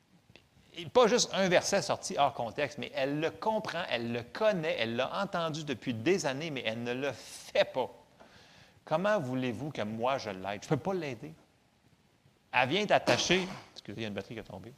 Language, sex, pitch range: French, male, 120-185 Hz